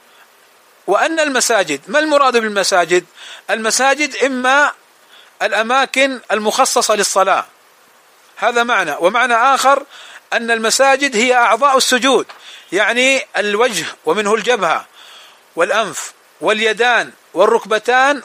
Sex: male